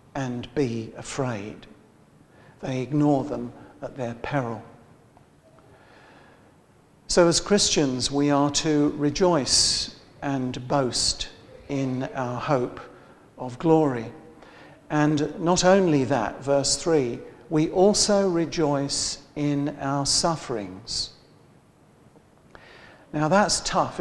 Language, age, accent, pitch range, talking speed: English, 50-69, British, 125-155 Hz, 95 wpm